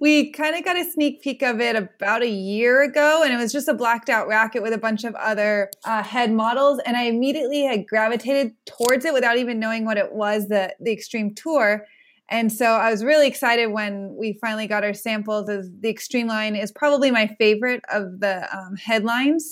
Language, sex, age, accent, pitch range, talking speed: English, female, 20-39, American, 215-265 Hz, 215 wpm